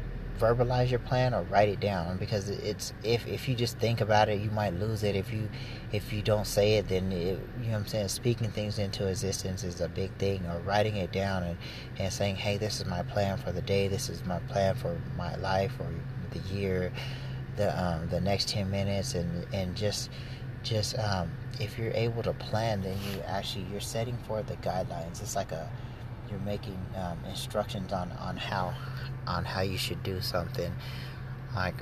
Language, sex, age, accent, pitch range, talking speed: English, male, 30-49, American, 95-125 Hz, 205 wpm